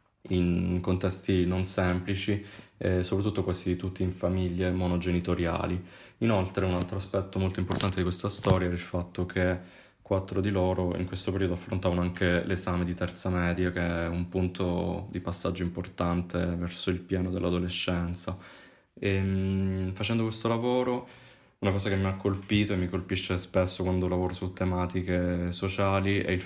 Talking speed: 155 wpm